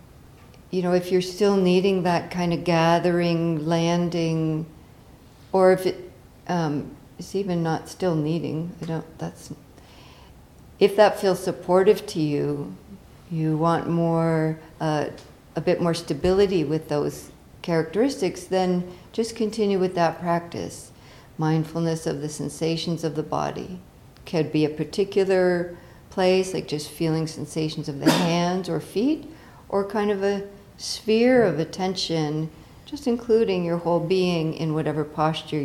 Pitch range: 155-185 Hz